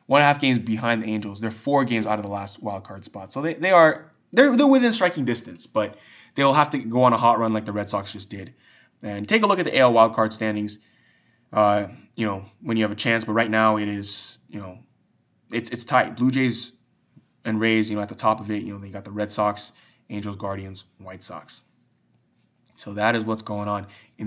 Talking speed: 245 wpm